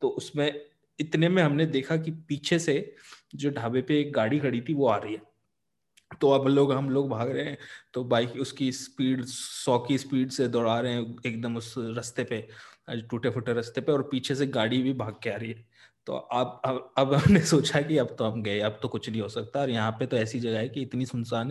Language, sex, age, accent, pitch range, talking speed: Hindi, male, 20-39, native, 120-140 Hz, 230 wpm